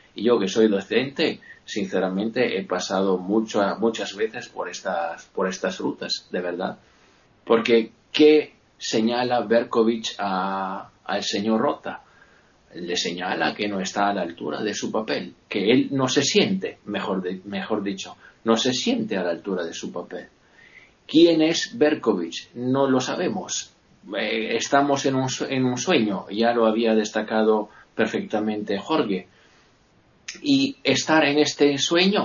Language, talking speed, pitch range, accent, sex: Spanish, 145 wpm, 110-150 Hz, Spanish, male